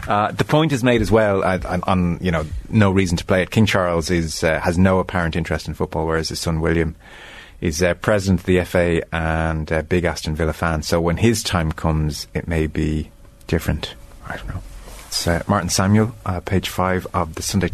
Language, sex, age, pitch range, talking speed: English, male, 30-49, 85-105 Hz, 215 wpm